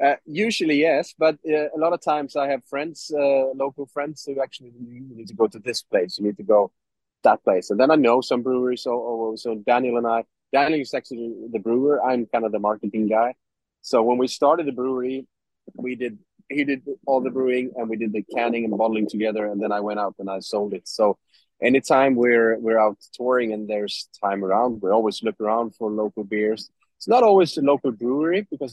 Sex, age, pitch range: male, 30-49, 110-130 Hz